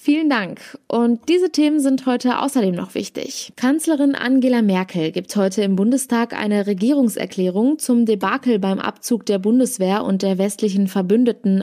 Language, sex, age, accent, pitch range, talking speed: German, female, 20-39, German, 195-255 Hz, 150 wpm